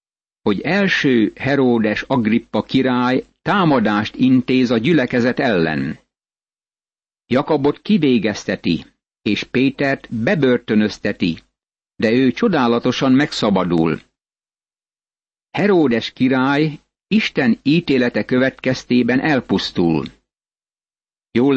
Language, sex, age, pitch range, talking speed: Hungarian, male, 60-79, 120-145 Hz, 70 wpm